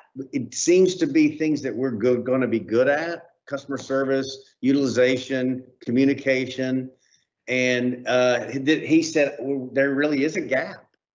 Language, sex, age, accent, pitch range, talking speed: English, male, 50-69, American, 125-170 Hz, 155 wpm